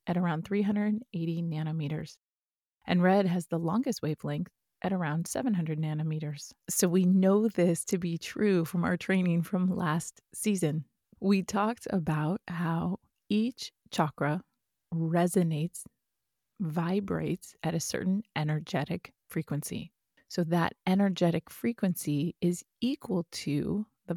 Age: 30-49